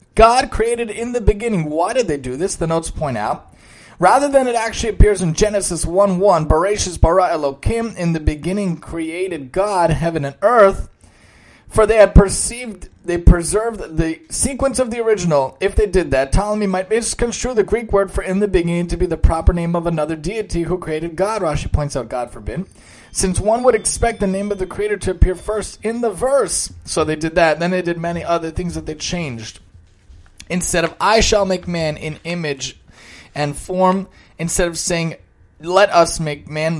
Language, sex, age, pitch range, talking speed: English, male, 30-49, 140-190 Hz, 195 wpm